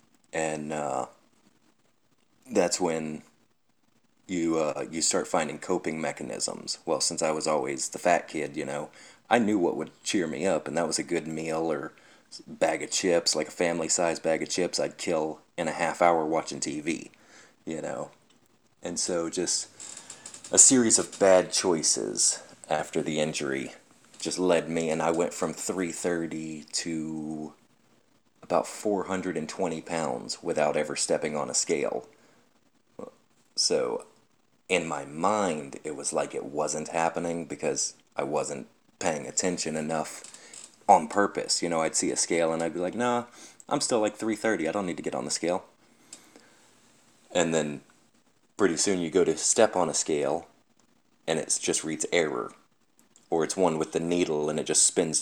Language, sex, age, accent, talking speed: English, male, 30-49, American, 165 wpm